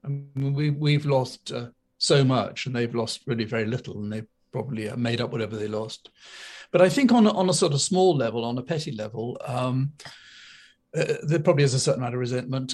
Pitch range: 120-145 Hz